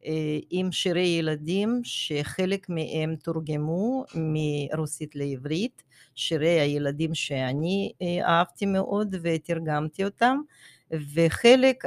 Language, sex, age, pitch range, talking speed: Hebrew, female, 50-69, 150-180 Hz, 80 wpm